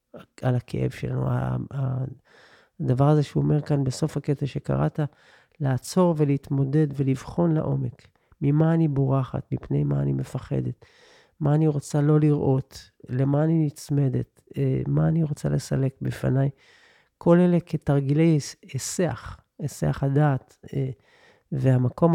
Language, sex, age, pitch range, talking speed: Hebrew, male, 40-59, 130-155 Hz, 115 wpm